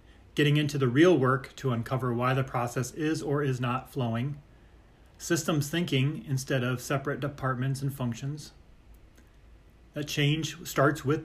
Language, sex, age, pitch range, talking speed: English, male, 30-49, 120-150 Hz, 145 wpm